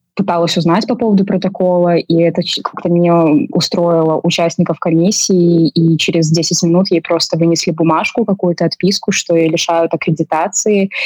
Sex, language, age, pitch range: female, Russian, 20-39, 170-190 Hz